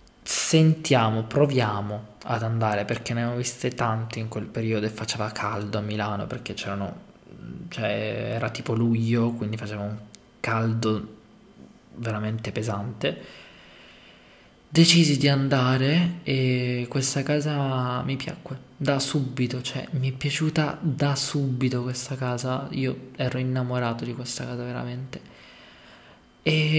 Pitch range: 110-130 Hz